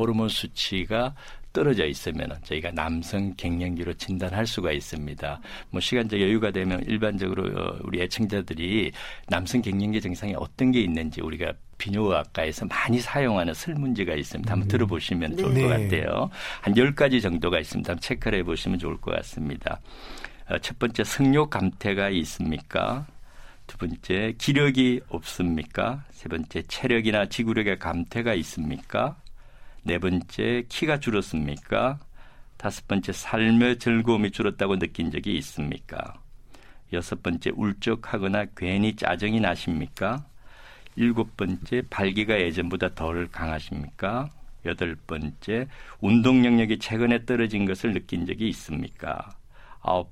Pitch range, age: 90-120 Hz, 60-79